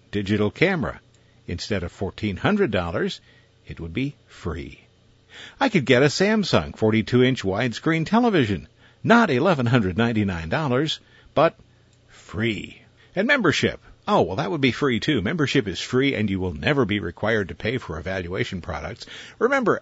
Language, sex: English, male